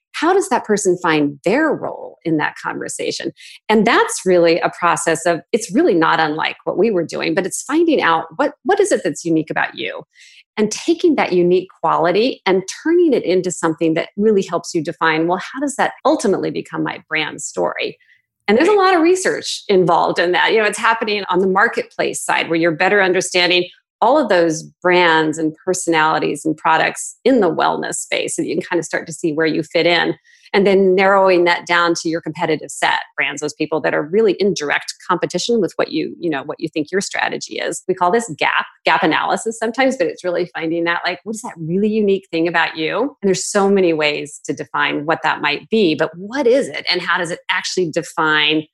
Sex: female